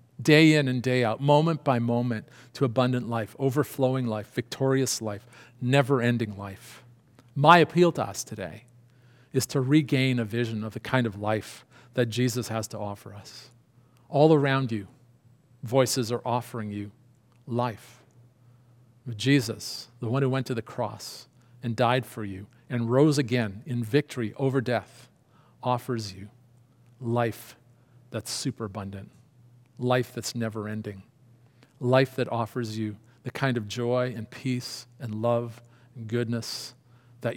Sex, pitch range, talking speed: male, 115-130 Hz, 140 wpm